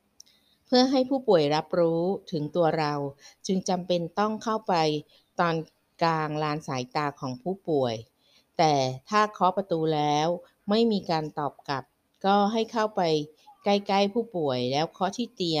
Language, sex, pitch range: Thai, female, 150-195 Hz